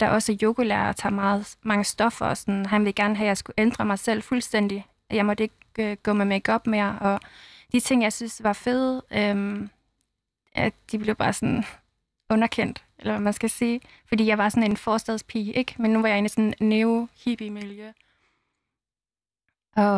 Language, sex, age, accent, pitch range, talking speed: Danish, female, 20-39, native, 205-230 Hz, 200 wpm